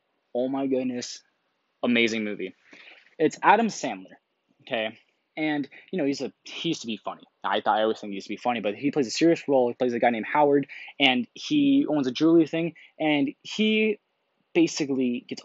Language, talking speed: English, 200 wpm